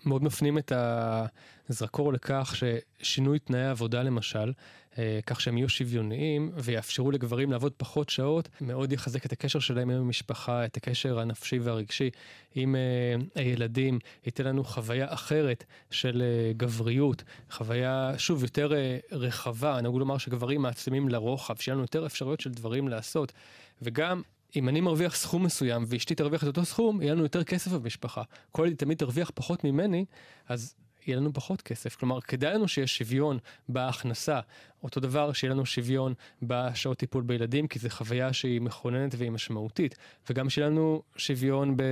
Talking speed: 150 wpm